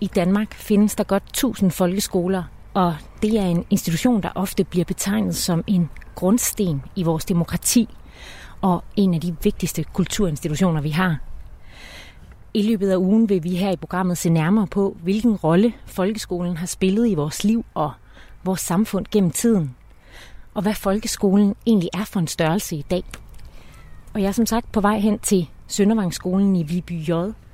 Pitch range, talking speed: 160-205 Hz, 170 wpm